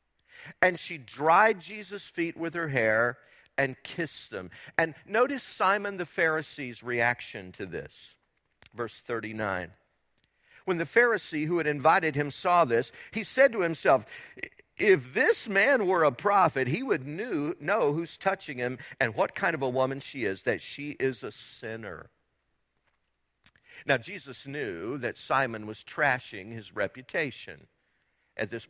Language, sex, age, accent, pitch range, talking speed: English, male, 50-69, American, 130-190 Hz, 145 wpm